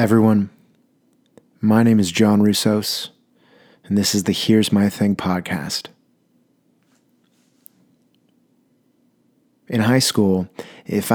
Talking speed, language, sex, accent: 95 wpm, English, male, American